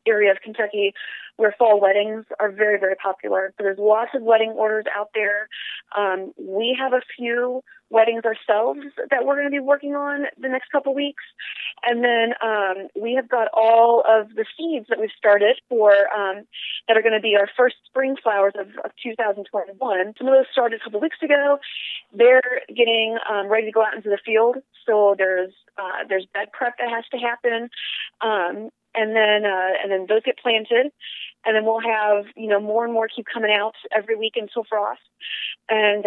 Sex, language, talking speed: female, English, 200 wpm